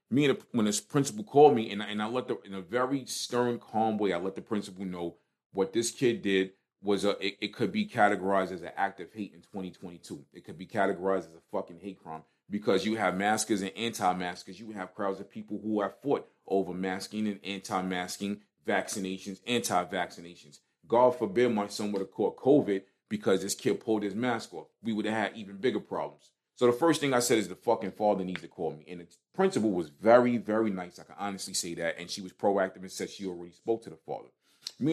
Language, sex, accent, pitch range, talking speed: English, male, American, 95-110 Hz, 225 wpm